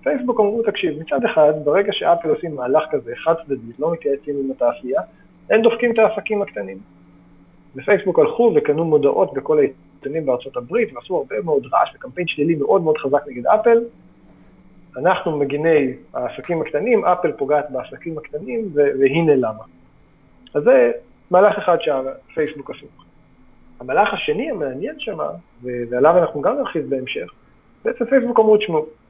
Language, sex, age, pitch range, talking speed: Hebrew, male, 40-59, 140-230 Hz, 135 wpm